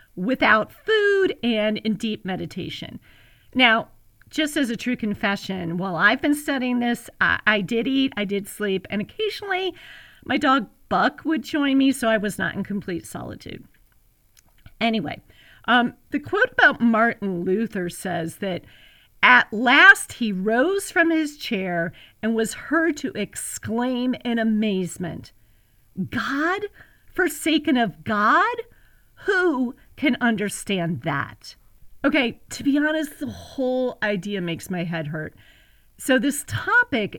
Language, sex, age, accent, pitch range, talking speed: English, female, 40-59, American, 185-275 Hz, 135 wpm